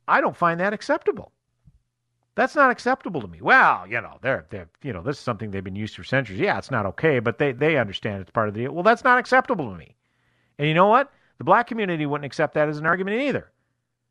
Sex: male